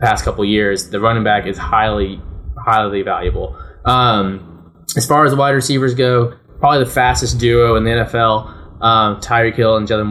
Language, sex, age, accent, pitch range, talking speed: English, male, 20-39, American, 105-120 Hz, 180 wpm